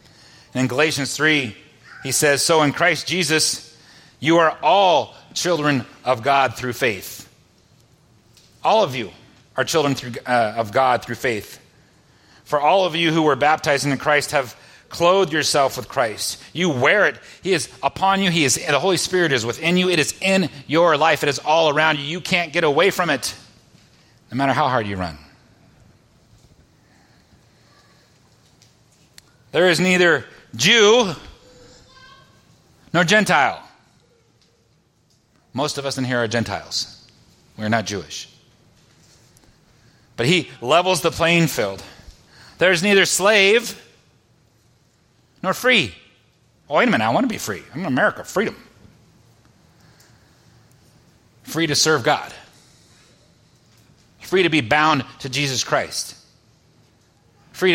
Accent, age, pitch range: American, 40-59, 125-170 Hz